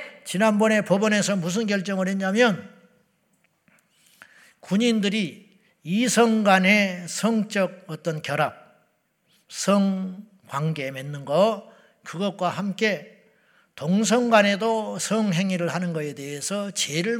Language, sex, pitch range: Korean, male, 170-220 Hz